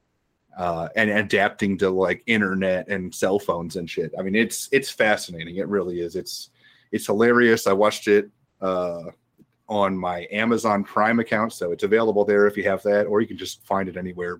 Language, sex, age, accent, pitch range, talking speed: English, male, 30-49, American, 100-130 Hz, 190 wpm